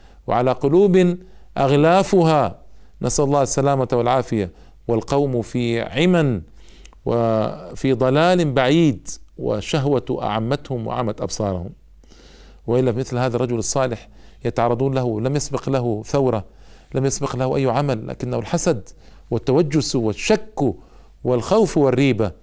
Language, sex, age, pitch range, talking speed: Arabic, male, 50-69, 105-140 Hz, 105 wpm